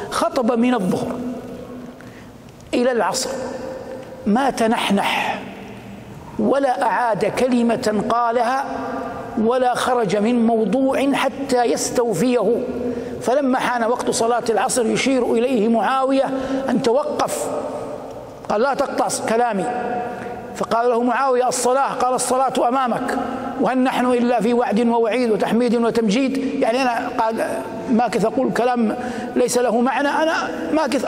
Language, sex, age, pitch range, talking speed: Arabic, male, 60-79, 240-275 Hz, 110 wpm